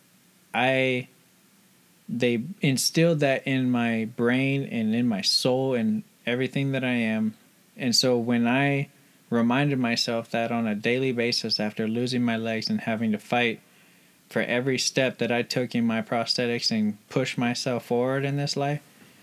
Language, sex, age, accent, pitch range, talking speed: English, male, 20-39, American, 115-130 Hz, 160 wpm